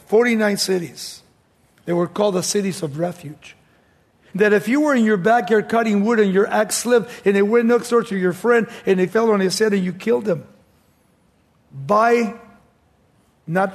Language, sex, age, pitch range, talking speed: English, male, 50-69, 180-230 Hz, 185 wpm